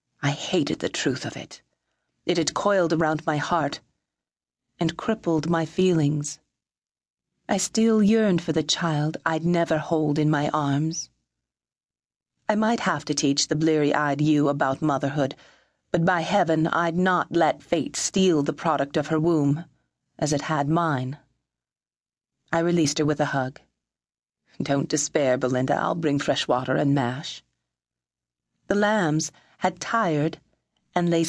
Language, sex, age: English, female, 40-59